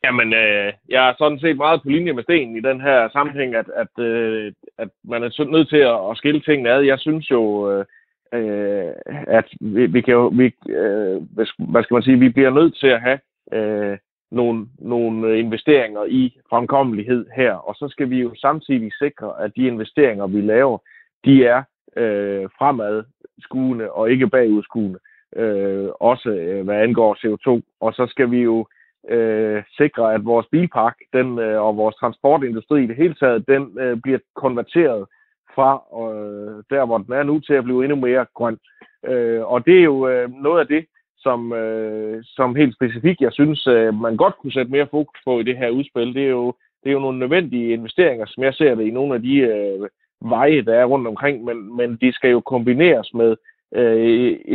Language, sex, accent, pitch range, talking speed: Danish, male, native, 110-140 Hz, 190 wpm